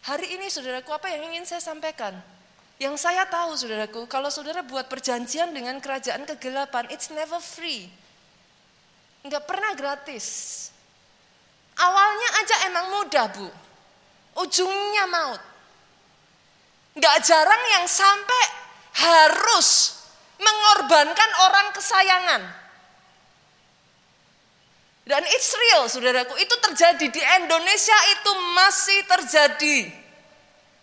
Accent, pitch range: native, 295-395 Hz